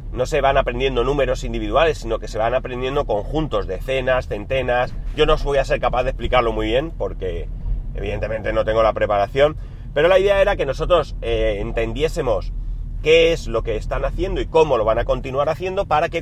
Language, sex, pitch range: Spanish, male, 110-145 Hz